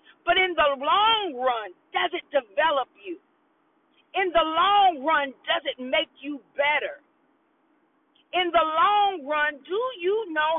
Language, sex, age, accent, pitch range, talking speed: English, female, 40-59, American, 285-355 Hz, 140 wpm